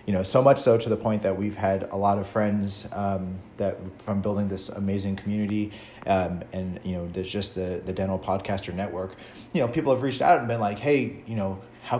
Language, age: English, 30-49